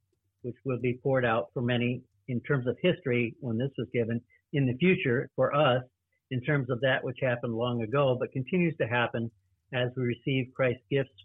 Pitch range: 115-135 Hz